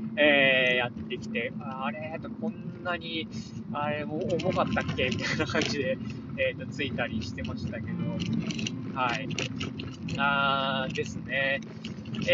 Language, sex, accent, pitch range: Japanese, male, native, 125-190 Hz